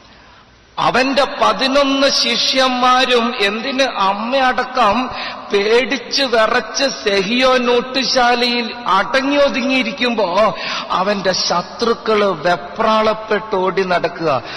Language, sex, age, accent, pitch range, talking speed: English, male, 50-69, Indian, 190-240 Hz, 60 wpm